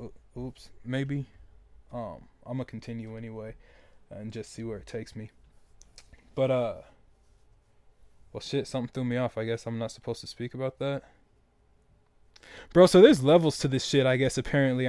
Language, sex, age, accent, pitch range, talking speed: English, male, 20-39, American, 110-140 Hz, 165 wpm